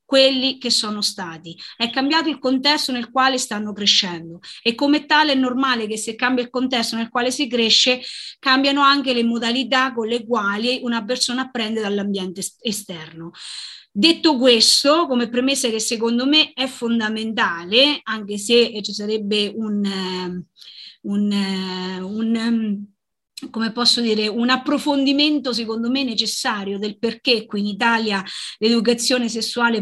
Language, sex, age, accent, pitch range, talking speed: Italian, female, 30-49, native, 220-265 Hz, 140 wpm